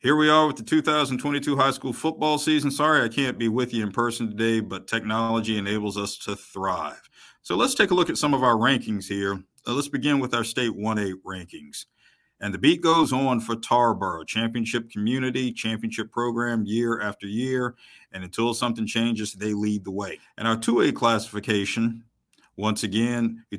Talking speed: 185 wpm